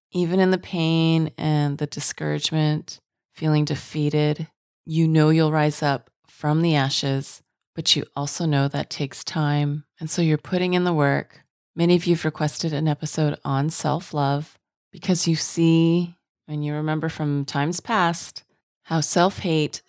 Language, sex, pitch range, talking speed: English, female, 150-180 Hz, 155 wpm